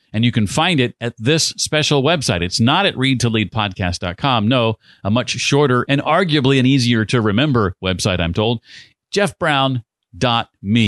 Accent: American